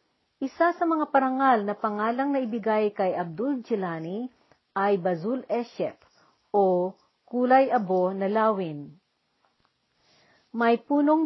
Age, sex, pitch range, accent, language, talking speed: 50-69, female, 195-260 Hz, native, Filipino, 110 wpm